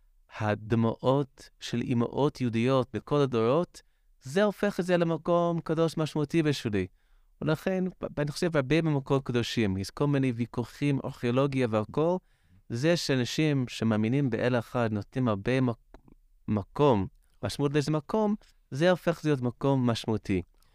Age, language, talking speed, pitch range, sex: 30-49, Hebrew, 120 wpm, 115-150 Hz, male